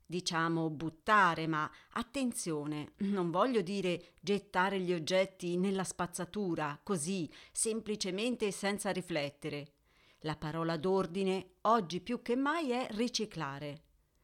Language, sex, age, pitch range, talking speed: Italian, female, 40-59, 165-220 Hz, 105 wpm